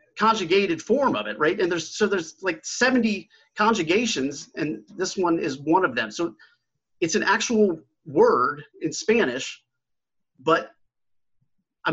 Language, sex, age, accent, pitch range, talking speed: English, male, 30-49, American, 125-175 Hz, 140 wpm